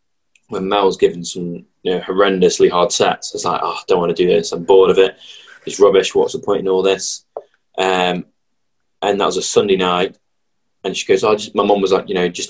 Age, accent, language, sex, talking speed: 20-39, British, English, male, 210 wpm